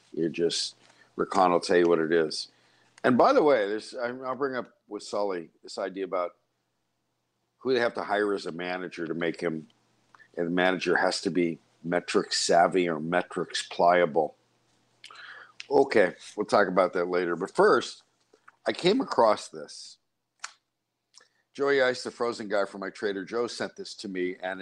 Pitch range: 95-140 Hz